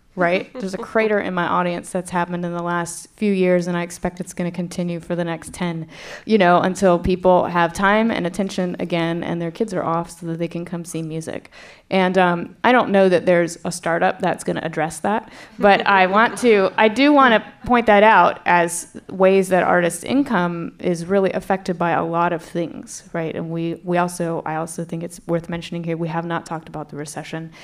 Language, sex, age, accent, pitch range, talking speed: English, female, 20-39, American, 165-185 Hz, 225 wpm